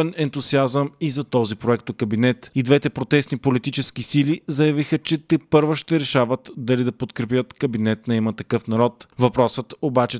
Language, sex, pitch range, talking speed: Bulgarian, male, 125-150 Hz, 160 wpm